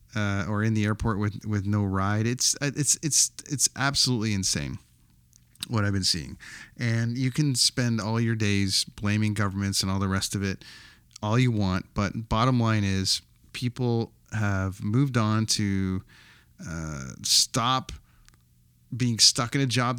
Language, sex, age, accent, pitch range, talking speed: English, male, 30-49, American, 100-120 Hz, 160 wpm